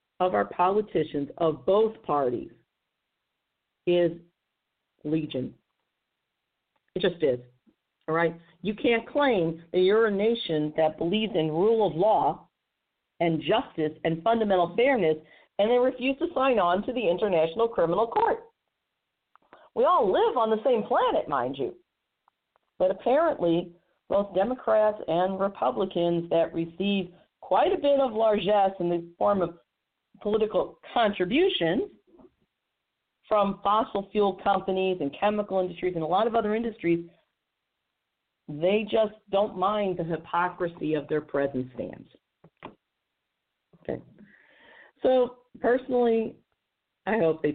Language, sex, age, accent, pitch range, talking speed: English, female, 50-69, American, 170-225 Hz, 125 wpm